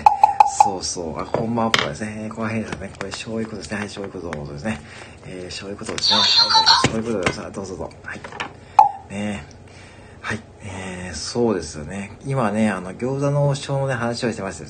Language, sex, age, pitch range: Japanese, male, 40-59, 90-115 Hz